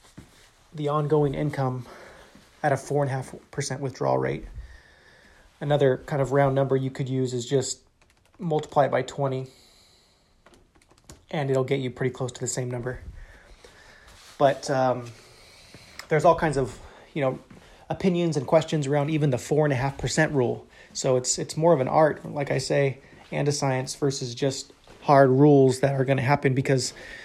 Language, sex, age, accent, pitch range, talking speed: English, male, 30-49, American, 130-145 Hz, 175 wpm